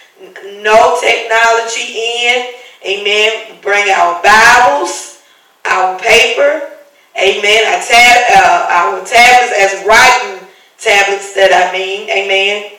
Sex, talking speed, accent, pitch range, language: female, 105 wpm, American, 200-240 Hz, English